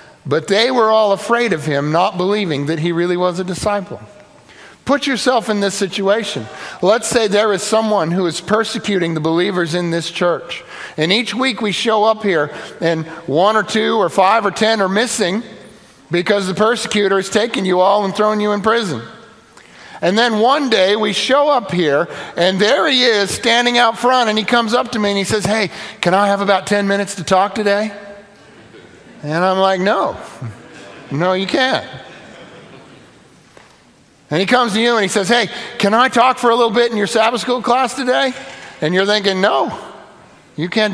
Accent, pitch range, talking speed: American, 190-230 Hz, 190 wpm